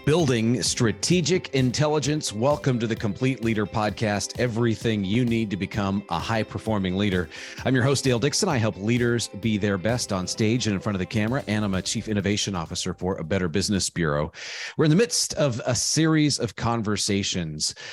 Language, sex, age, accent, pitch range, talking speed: English, male, 30-49, American, 95-115 Hz, 185 wpm